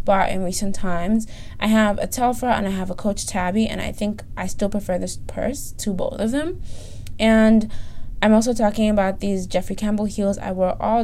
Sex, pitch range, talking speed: female, 180-210 Hz, 200 wpm